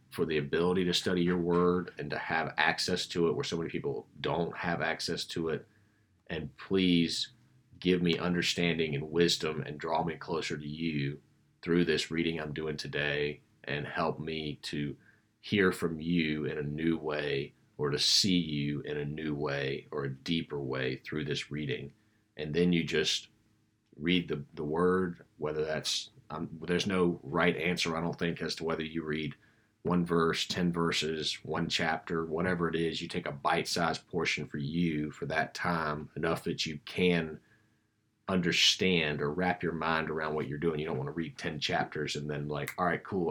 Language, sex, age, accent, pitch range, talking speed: English, male, 40-59, American, 75-90 Hz, 185 wpm